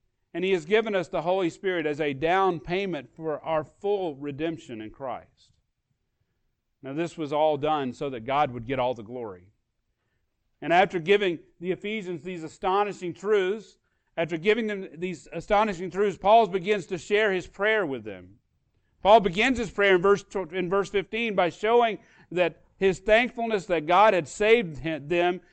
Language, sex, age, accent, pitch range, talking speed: English, male, 40-59, American, 155-195 Hz, 165 wpm